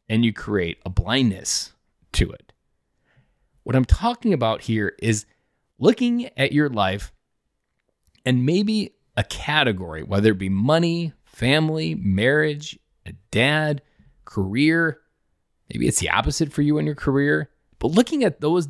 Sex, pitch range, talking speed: male, 100-145 Hz, 140 wpm